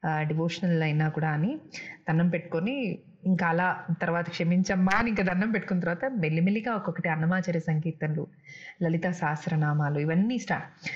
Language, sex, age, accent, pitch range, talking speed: Telugu, female, 30-49, native, 165-215 Hz, 125 wpm